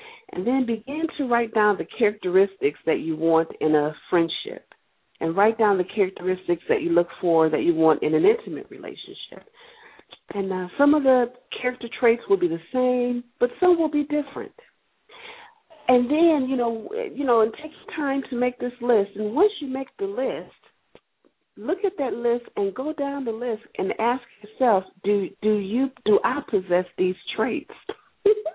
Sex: female